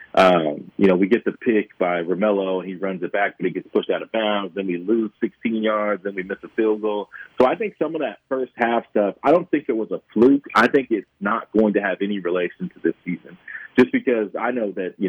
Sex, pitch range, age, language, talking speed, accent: male, 90-110 Hz, 40-59, English, 260 wpm, American